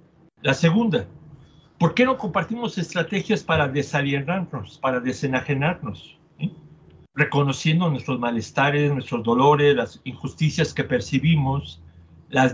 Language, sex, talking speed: Spanish, male, 105 wpm